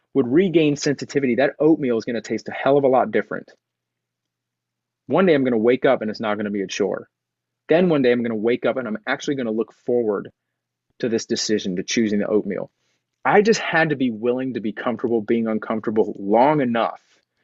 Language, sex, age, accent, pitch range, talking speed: English, male, 30-49, American, 110-135 Hz, 205 wpm